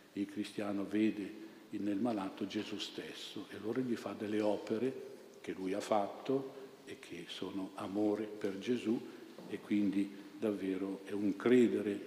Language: Italian